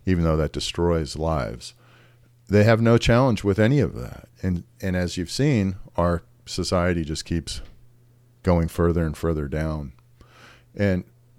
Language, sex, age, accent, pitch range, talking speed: English, male, 50-69, American, 80-115 Hz, 150 wpm